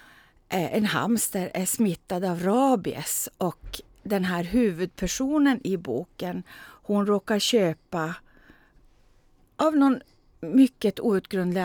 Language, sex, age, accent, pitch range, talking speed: Swedish, female, 40-59, native, 175-225 Hz, 100 wpm